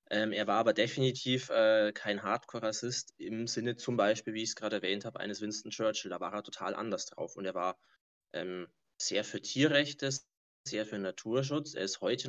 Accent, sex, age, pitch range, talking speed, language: German, male, 20-39, 110-135 Hz, 195 wpm, German